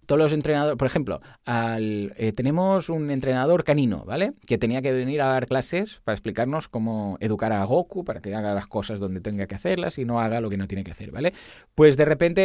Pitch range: 115-175 Hz